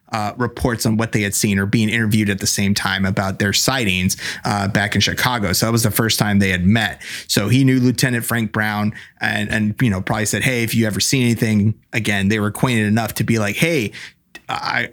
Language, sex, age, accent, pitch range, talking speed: English, male, 30-49, American, 105-125 Hz, 235 wpm